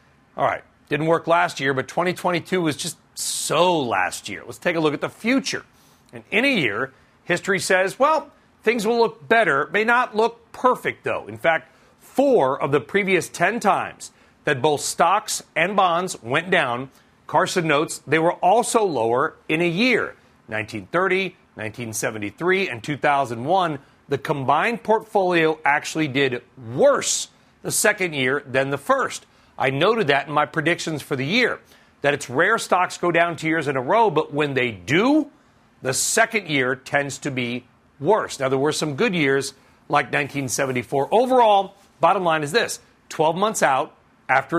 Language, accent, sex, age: English, American, male, 40-59